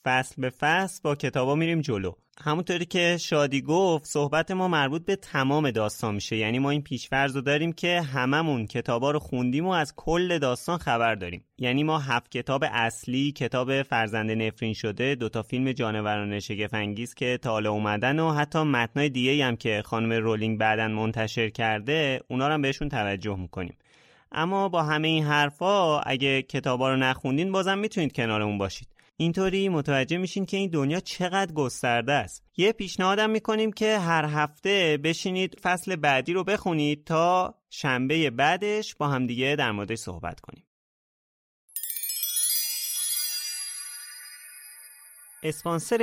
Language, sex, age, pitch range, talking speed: Persian, male, 30-49, 115-165 Hz, 140 wpm